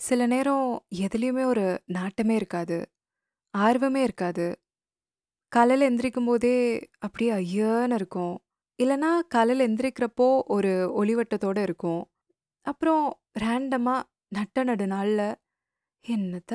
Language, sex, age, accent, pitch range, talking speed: Tamil, female, 20-39, native, 200-265 Hz, 85 wpm